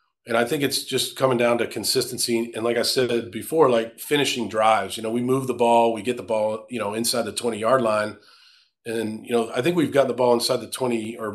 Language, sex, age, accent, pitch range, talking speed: English, male, 40-59, American, 105-125 Hz, 250 wpm